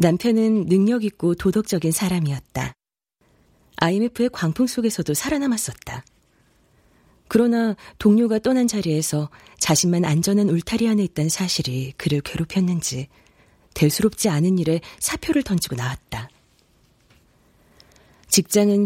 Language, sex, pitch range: Korean, female, 155-220 Hz